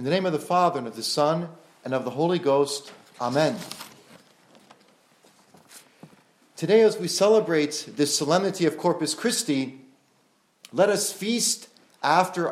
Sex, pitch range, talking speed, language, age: male, 155-215 Hz, 140 wpm, English, 40-59